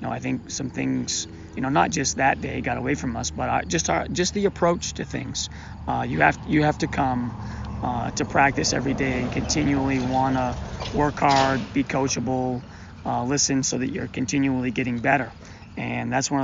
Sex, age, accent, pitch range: male, 30-49, American, 95-135 Hz